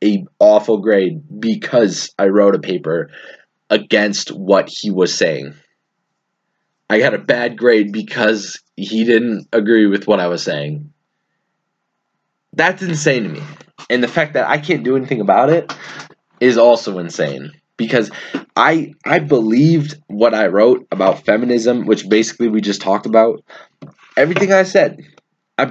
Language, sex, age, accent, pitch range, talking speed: English, male, 20-39, American, 110-160 Hz, 145 wpm